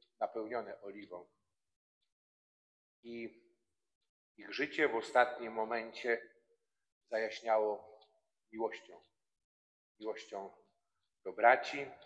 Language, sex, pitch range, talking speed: Polish, male, 105-135 Hz, 65 wpm